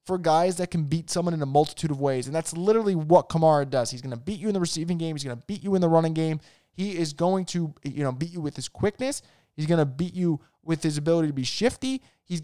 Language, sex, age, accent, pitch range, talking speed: English, male, 20-39, American, 155-200 Hz, 280 wpm